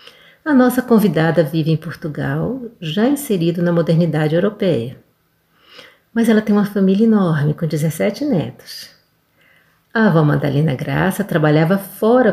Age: 50-69